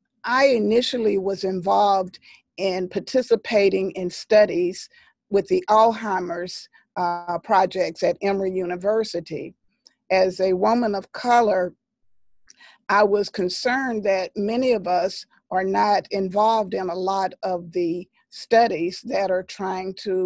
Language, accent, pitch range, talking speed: English, American, 185-220 Hz, 120 wpm